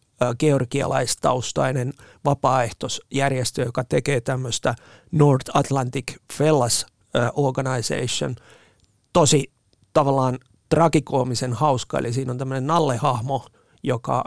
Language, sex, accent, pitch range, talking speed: Finnish, male, native, 125-150 Hz, 80 wpm